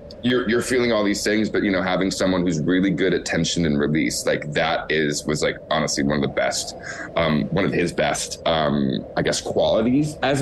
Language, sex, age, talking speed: English, male, 20-39, 220 wpm